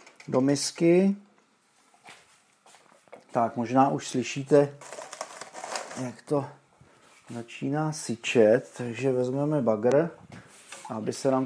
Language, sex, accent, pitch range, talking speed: Czech, male, native, 120-145 Hz, 85 wpm